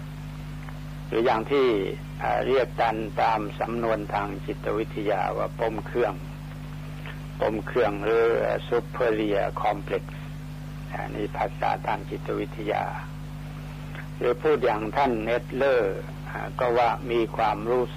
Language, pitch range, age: Thai, 140-150 Hz, 60-79